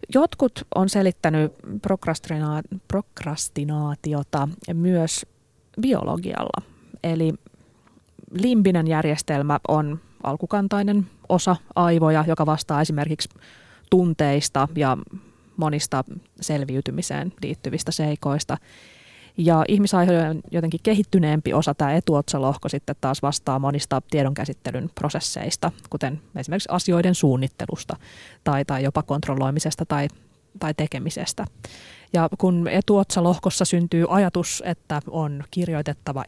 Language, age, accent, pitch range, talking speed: Finnish, 20-39, native, 145-180 Hz, 90 wpm